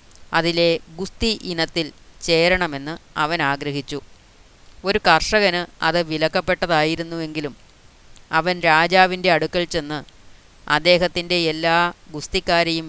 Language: Malayalam